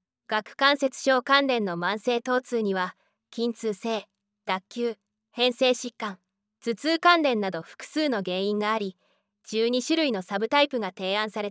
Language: Japanese